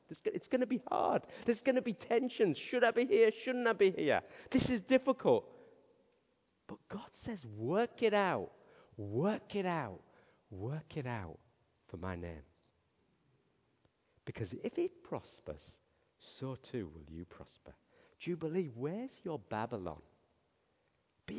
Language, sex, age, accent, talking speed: English, male, 50-69, British, 140 wpm